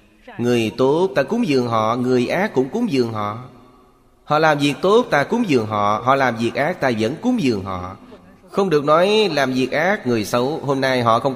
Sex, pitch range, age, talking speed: male, 110-140 Hz, 30-49, 215 wpm